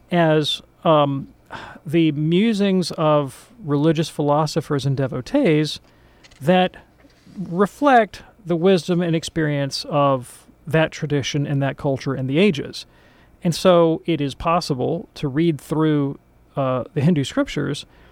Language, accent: English, American